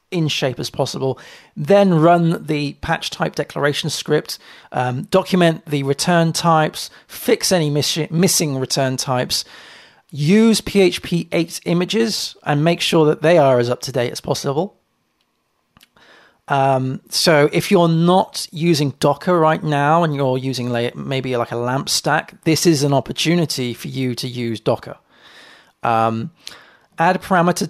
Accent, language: British, English